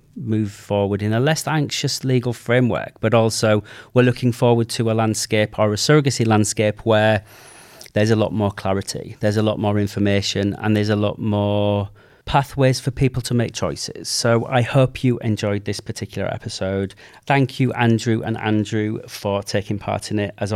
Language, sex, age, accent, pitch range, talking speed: English, male, 40-59, British, 105-125 Hz, 180 wpm